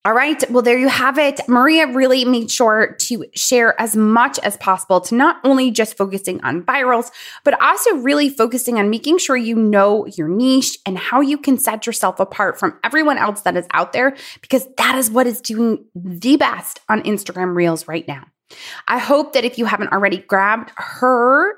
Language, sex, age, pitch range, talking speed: English, female, 20-39, 200-265 Hz, 195 wpm